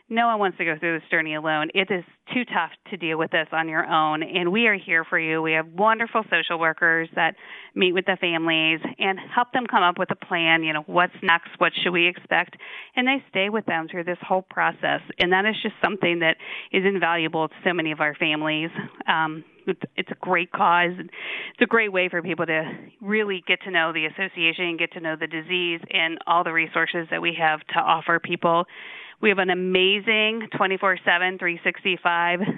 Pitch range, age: 165-205 Hz, 40-59